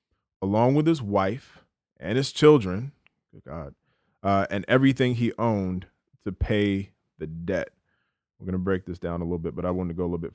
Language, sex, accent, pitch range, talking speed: English, male, American, 90-120 Hz, 205 wpm